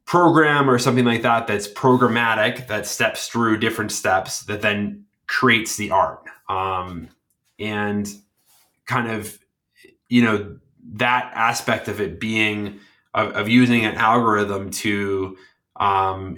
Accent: American